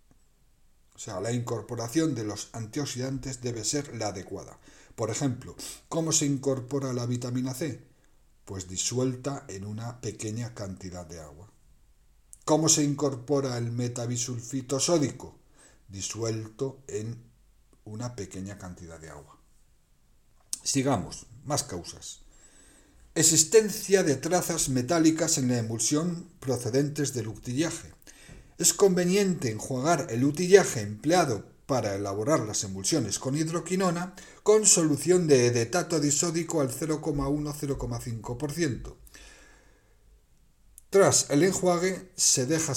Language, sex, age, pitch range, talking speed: Spanish, male, 60-79, 115-160 Hz, 110 wpm